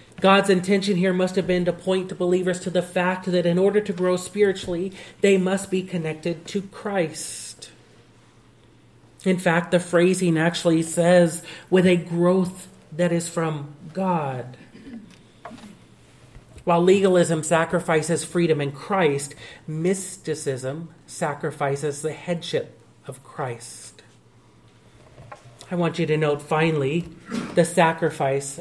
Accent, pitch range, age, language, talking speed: American, 160-185 Hz, 40-59, English, 120 wpm